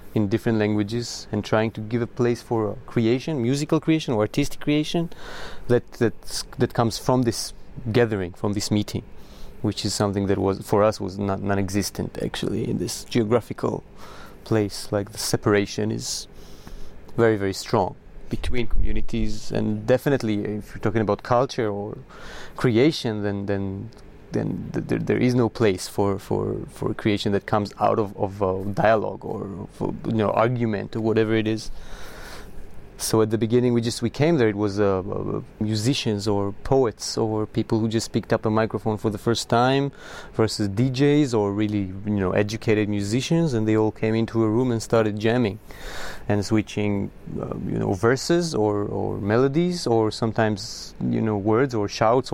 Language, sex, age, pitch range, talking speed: English, male, 30-49, 105-120 Hz, 175 wpm